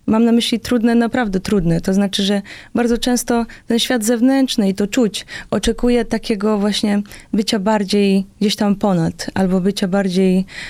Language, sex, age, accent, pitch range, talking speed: Polish, female, 20-39, native, 190-235 Hz, 155 wpm